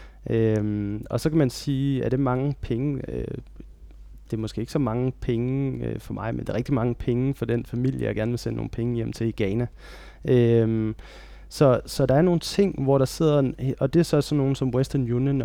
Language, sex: Danish, male